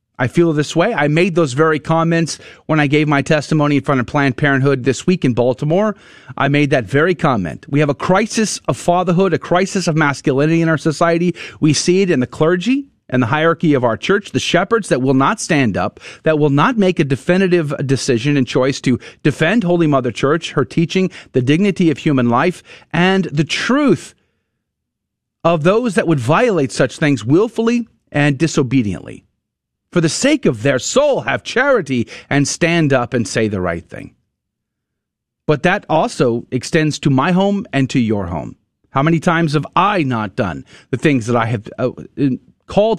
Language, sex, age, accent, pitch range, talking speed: English, male, 40-59, American, 130-175 Hz, 185 wpm